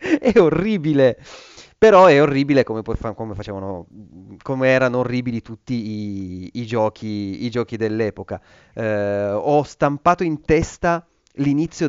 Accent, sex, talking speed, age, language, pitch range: native, male, 125 wpm, 30-49, Italian, 110-145 Hz